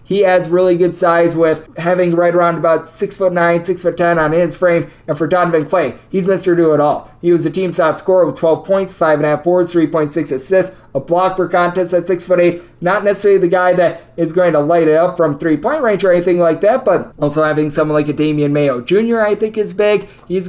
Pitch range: 170-195 Hz